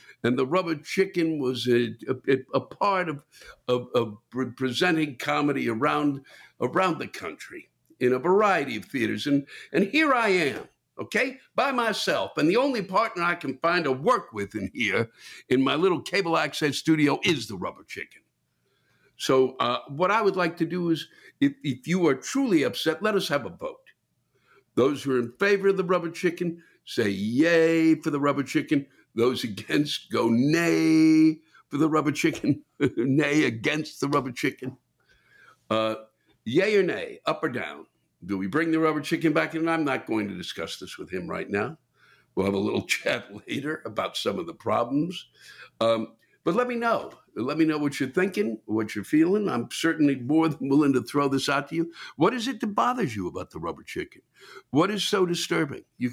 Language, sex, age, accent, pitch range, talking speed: English, male, 60-79, American, 130-180 Hz, 190 wpm